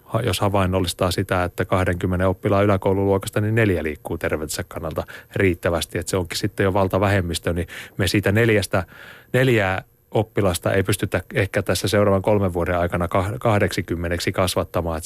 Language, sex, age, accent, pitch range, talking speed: Finnish, male, 30-49, native, 95-105 Hz, 140 wpm